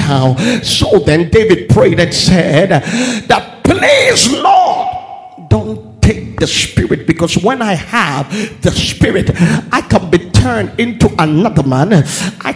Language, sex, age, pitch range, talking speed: English, male, 50-69, 155-230 Hz, 130 wpm